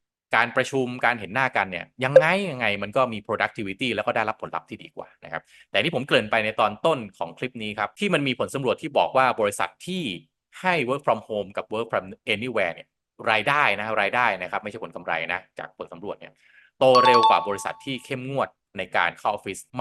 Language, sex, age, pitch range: Thai, male, 20-39, 95-120 Hz